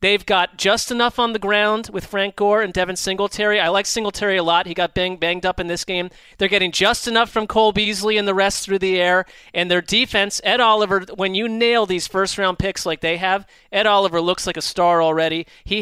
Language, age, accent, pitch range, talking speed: English, 30-49, American, 180-210 Hz, 230 wpm